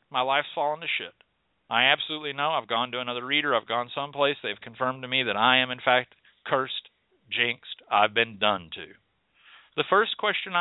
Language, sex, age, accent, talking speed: English, male, 40-59, American, 190 wpm